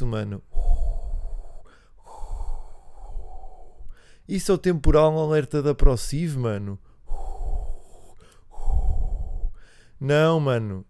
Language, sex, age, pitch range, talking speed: Portuguese, male, 20-39, 100-125 Hz, 60 wpm